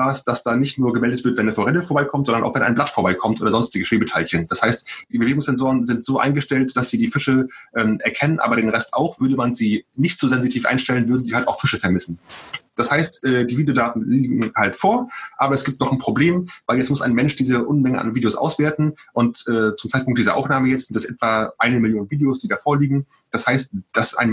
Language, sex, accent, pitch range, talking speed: German, male, German, 115-140 Hz, 225 wpm